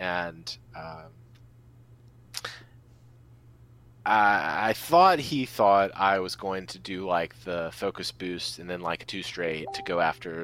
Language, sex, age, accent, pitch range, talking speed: English, male, 30-49, American, 95-125 Hz, 140 wpm